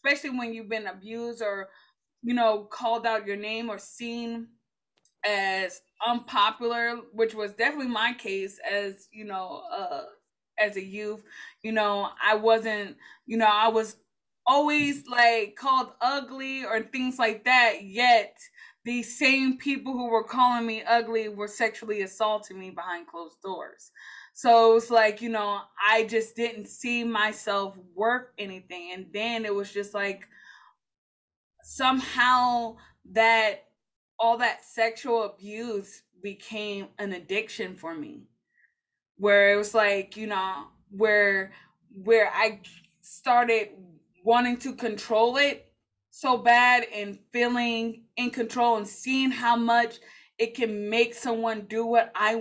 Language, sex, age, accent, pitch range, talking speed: English, female, 20-39, American, 205-240 Hz, 140 wpm